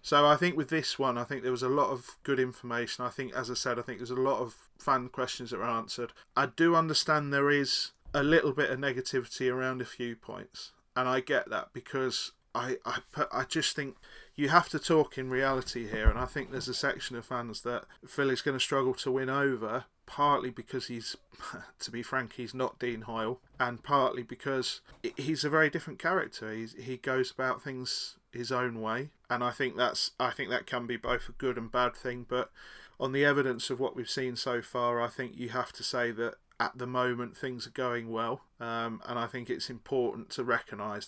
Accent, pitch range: British, 120-140 Hz